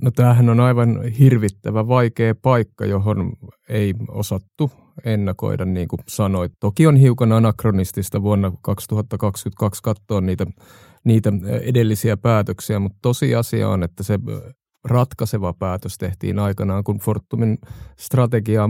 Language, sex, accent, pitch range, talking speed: Finnish, male, native, 100-120 Hz, 120 wpm